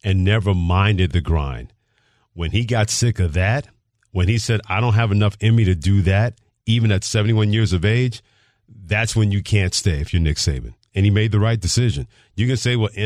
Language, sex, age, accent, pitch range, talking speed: English, male, 40-59, American, 95-115 Hz, 220 wpm